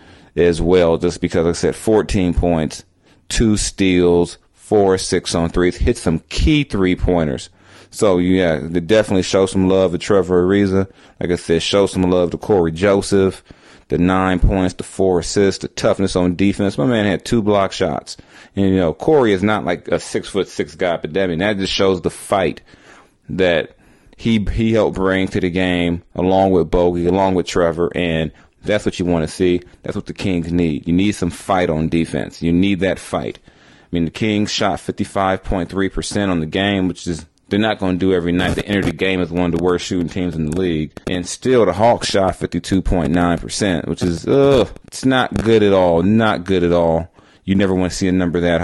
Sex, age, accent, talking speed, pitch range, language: male, 30-49, American, 215 wpm, 85-95 Hz, English